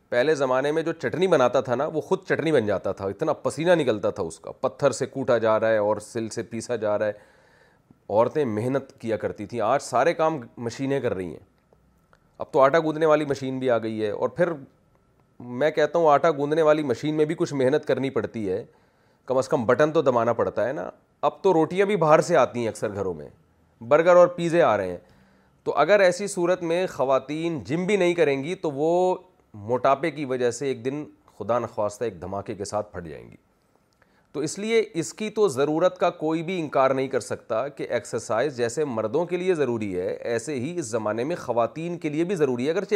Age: 30-49